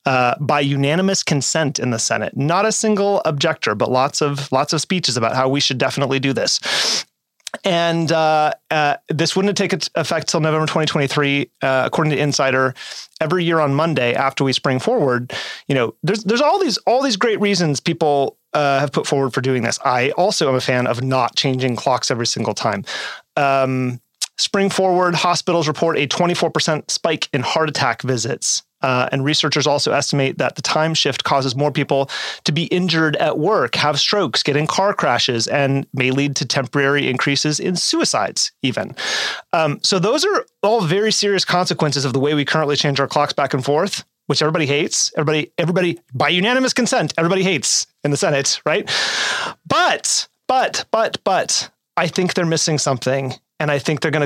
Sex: male